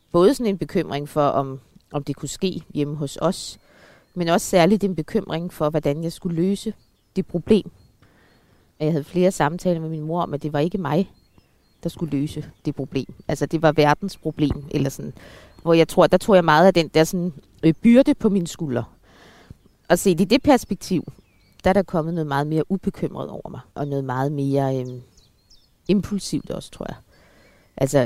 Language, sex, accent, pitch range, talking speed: Danish, female, native, 140-175 Hz, 190 wpm